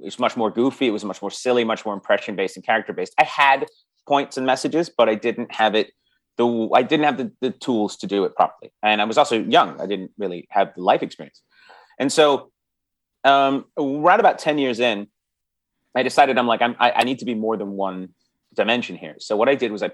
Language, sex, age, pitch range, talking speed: English, male, 30-49, 100-130 Hz, 240 wpm